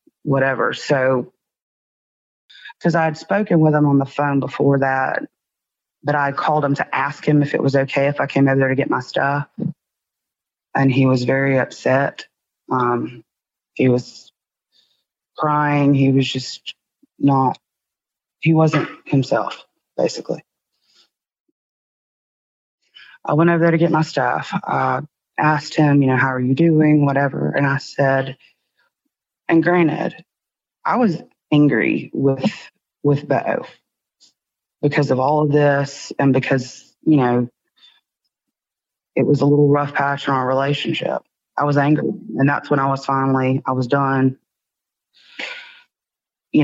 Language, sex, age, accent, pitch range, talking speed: English, female, 30-49, American, 135-155 Hz, 140 wpm